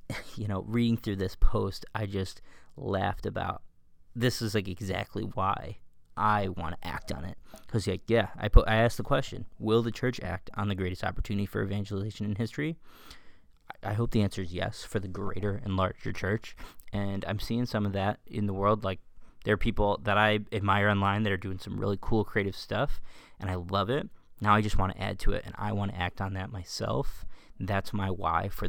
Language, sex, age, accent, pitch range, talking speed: English, male, 20-39, American, 95-110 Hz, 215 wpm